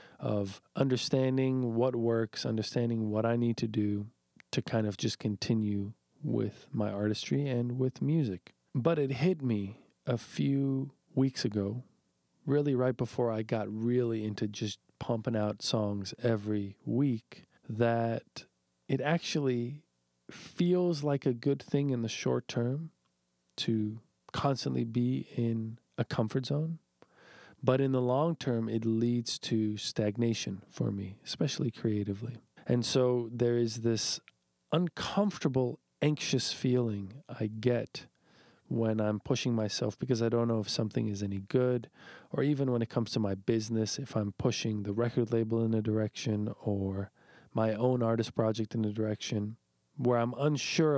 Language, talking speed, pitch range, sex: English, 145 wpm, 110-130 Hz, male